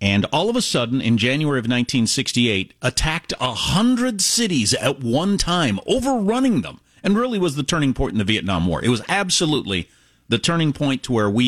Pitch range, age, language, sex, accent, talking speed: 115-180 Hz, 40-59, English, male, American, 195 wpm